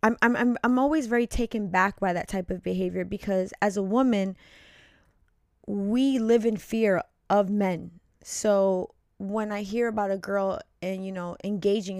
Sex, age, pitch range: female, 20-39, 180-210 Hz